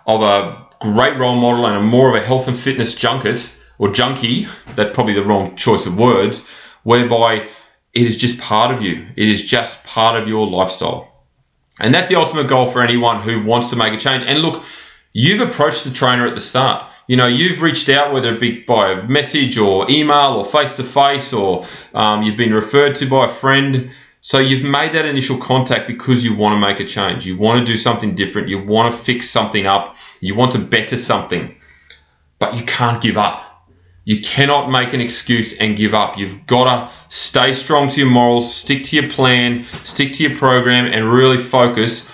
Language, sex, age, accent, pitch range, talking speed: English, male, 30-49, Australian, 110-135 Hz, 210 wpm